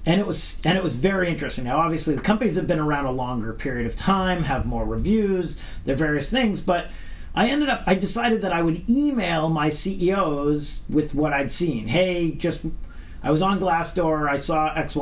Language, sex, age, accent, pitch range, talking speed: English, male, 40-59, American, 140-175 Hz, 210 wpm